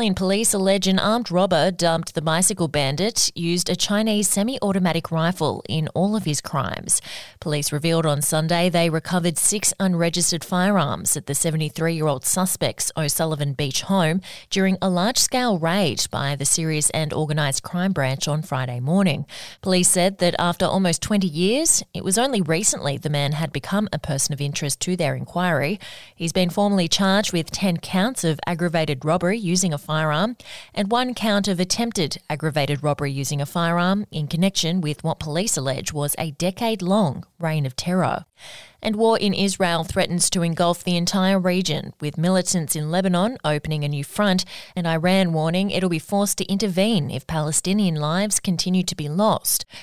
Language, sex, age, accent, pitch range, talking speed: English, female, 20-39, Australian, 155-190 Hz, 170 wpm